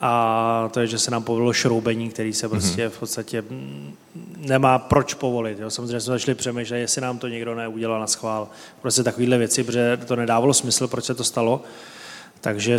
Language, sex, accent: Czech, male, native